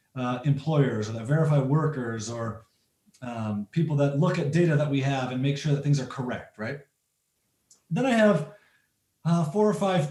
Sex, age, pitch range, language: male, 30-49, 125-165 Hz, English